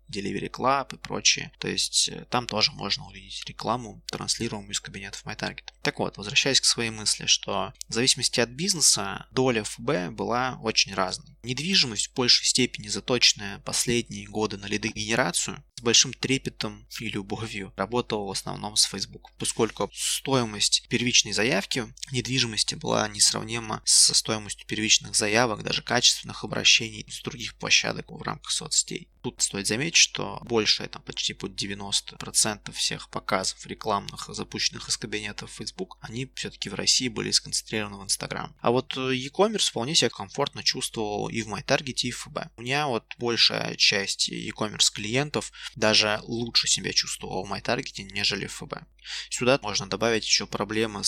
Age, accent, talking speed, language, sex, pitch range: 20-39, native, 150 wpm, Russian, male, 105-130 Hz